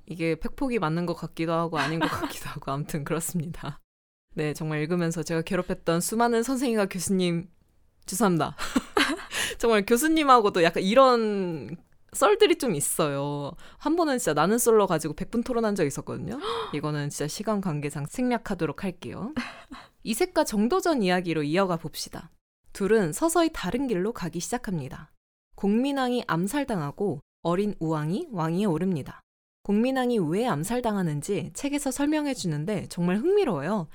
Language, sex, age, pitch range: Korean, female, 20-39, 165-235 Hz